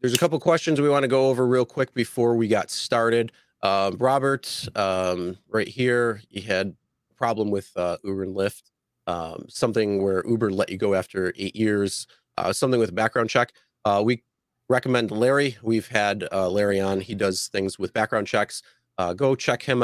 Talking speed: 195 wpm